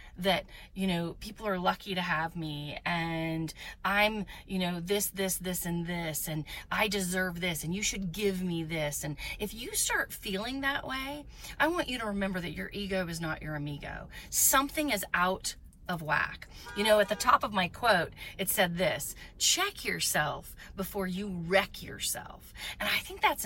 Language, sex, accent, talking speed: English, female, American, 185 wpm